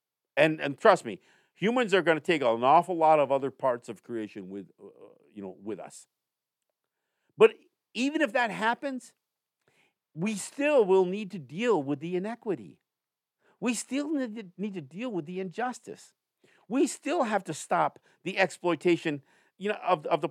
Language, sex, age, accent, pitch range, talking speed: English, male, 50-69, American, 150-235 Hz, 175 wpm